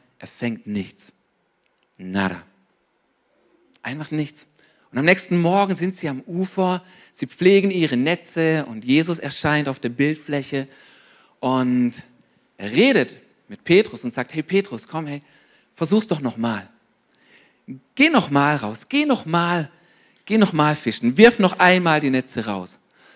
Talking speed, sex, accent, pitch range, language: 135 wpm, male, German, 130-185 Hz, German